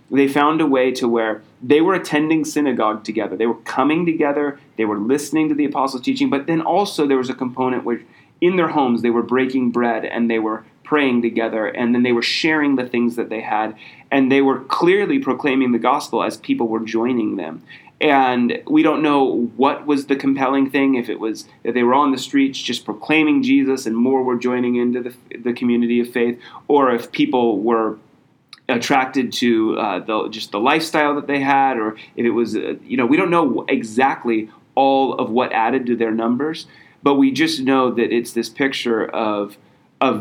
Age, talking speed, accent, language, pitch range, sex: 30-49, 205 wpm, American, English, 115-140 Hz, male